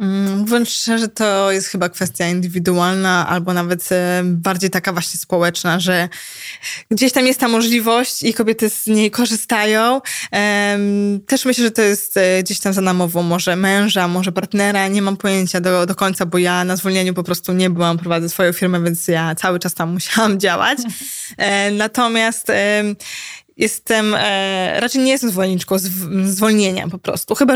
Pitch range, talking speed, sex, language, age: 190-220 Hz, 155 wpm, female, Polish, 20-39